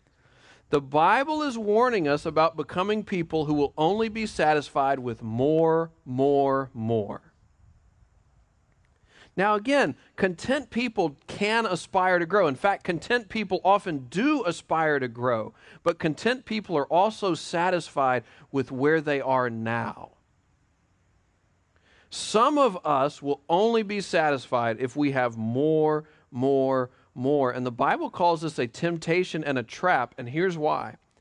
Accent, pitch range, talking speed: American, 125-175 Hz, 135 wpm